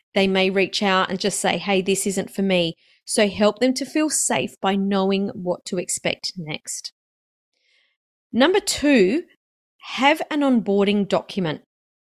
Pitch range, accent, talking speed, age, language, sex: 195-245 Hz, Australian, 150 wpm, 30-49, English, female